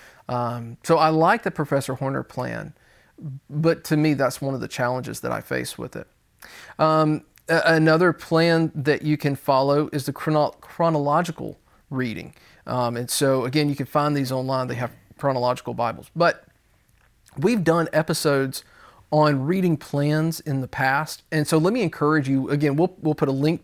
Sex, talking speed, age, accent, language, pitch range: male, 175 wpm, 40-59, American, English, 130-160 Hz